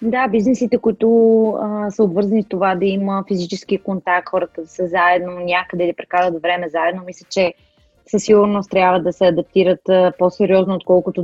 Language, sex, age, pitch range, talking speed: Bulgarian, female, 20-39, 170-195 Hz, 165 wpm